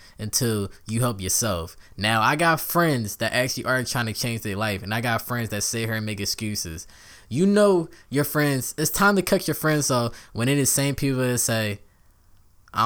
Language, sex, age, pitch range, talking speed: English, male, 10-29, 105-130 Hz, 210 wpm